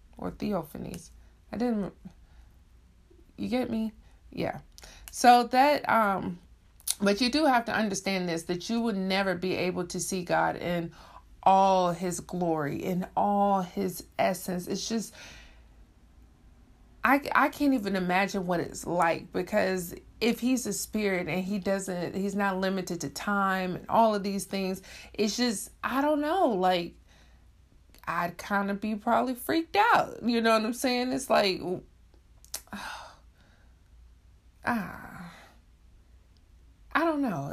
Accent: American